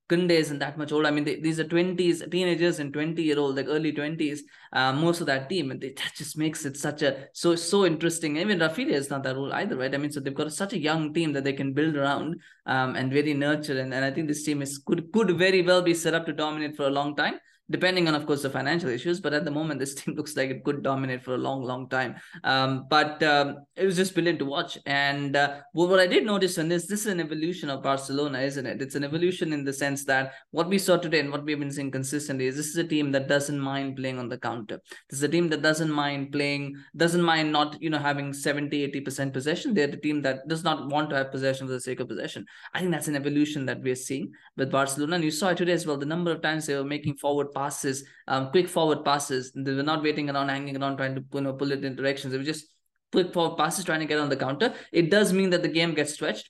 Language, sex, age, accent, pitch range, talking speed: English, male, 20-39, Indian, 140-165 Hz, 270 wpm